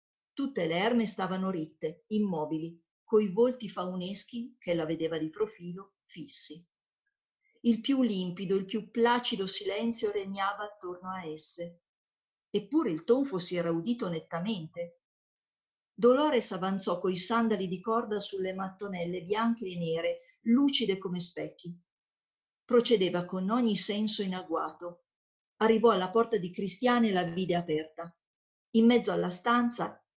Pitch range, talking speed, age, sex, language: 175-220 Hz, 130 wpm, 50-69, female, Italian